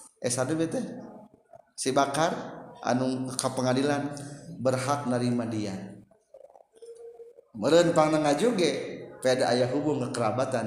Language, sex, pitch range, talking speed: Indonesian, male, 130-200 Hz, 75 wpm